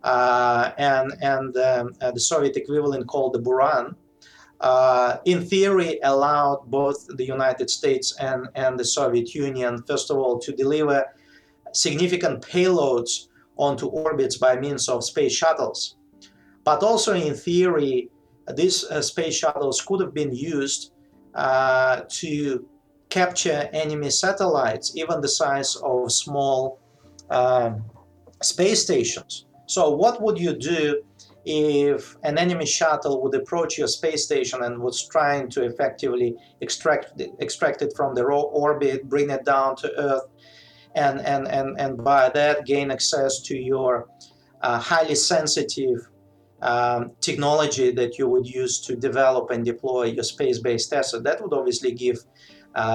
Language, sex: English, male